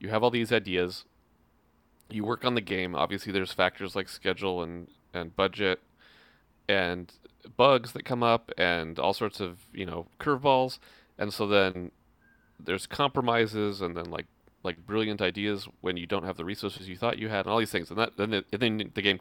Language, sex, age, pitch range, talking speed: English, male, 30-49, 90-110 Hz, 195 wpm